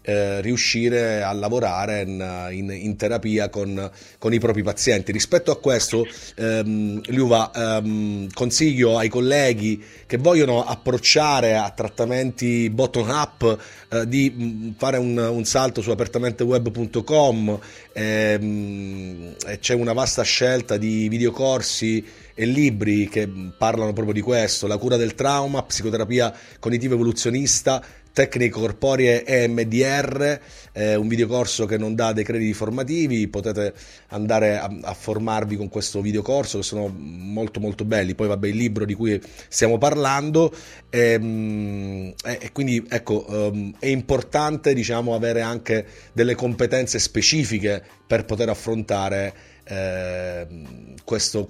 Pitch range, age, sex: 105-125 Hz, 30-49, male